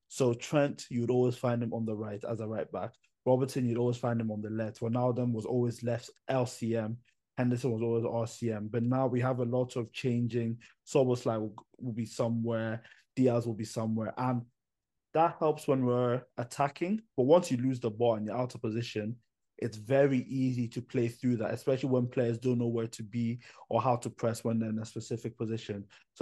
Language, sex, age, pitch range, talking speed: English, male, 20-39, 115-125 Hz, 205 wpm